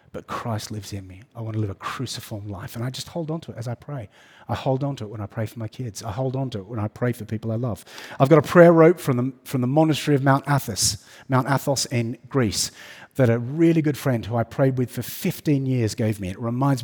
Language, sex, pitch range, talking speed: English, male, 120-160 Hz, 280 wpm